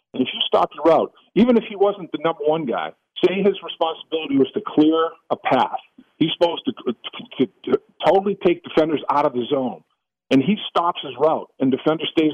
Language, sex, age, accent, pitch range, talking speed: English, male, 50-69, American, 150-190 Hz, 220 wpm